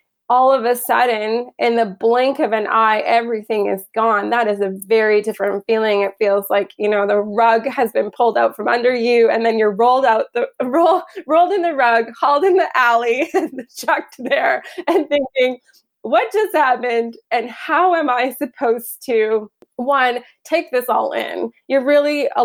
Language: English